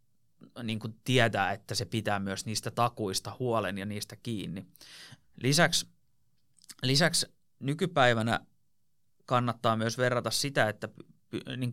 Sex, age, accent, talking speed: male, 30-49, native, 105 wpm